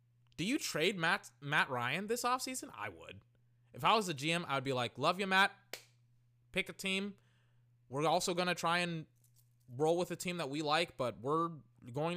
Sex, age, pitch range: male, 20-39, 120-180 Hz